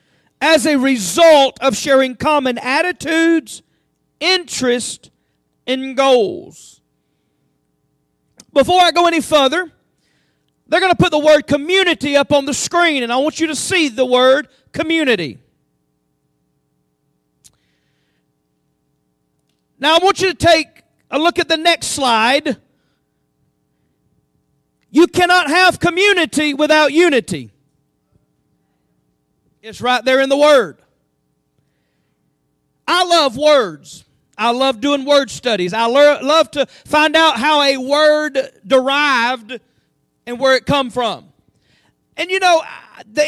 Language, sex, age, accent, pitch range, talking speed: English, male, 40-59, American, 255-330 Hz, 120 wpm